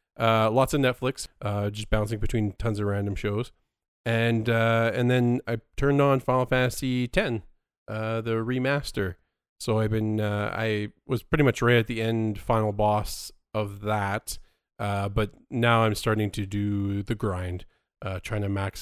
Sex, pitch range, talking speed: male, 100-115 Hz, 170 wpm